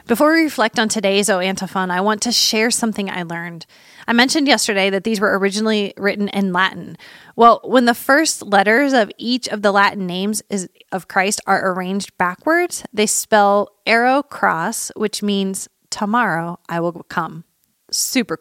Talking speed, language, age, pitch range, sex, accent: 165 wpm, English, 20-39, 185-230 Hz, female, American